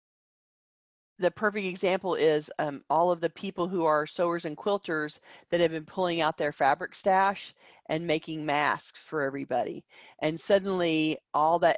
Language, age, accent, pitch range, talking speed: English, 40-59, American, 150-185 Hz, 160 wpm